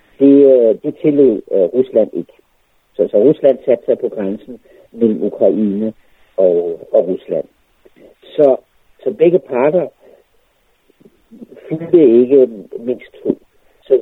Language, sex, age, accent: Danish, male, 60-79, native